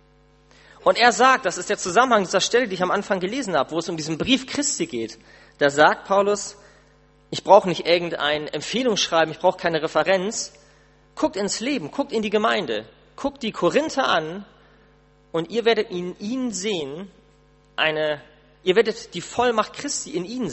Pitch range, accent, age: 155-220 Hz, German, 40-59